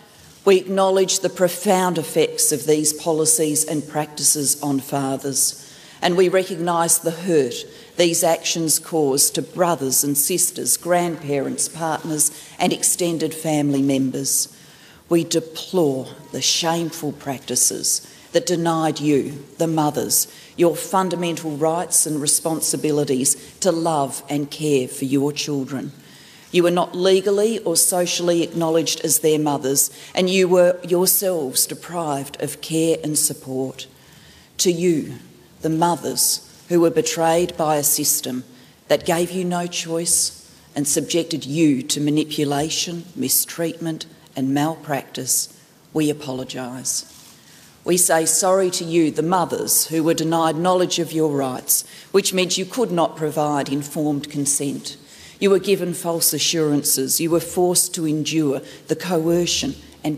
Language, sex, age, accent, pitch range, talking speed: English, female, 40-59, Australian, 145-175 Hz, 130 wpm